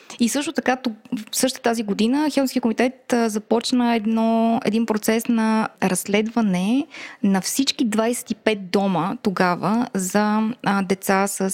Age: 20-39